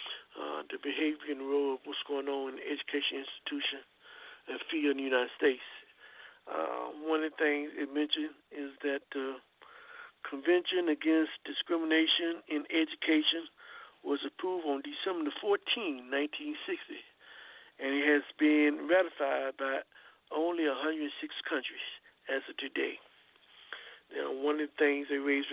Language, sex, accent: English, male, American